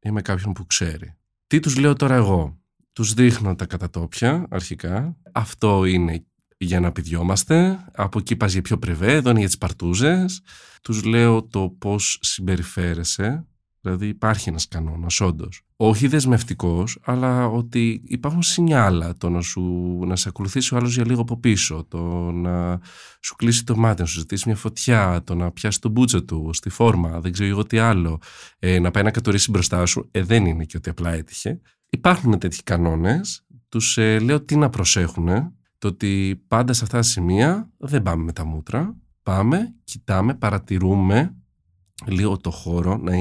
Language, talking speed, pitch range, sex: Greek, 170 wpm, 90-125 Hz, male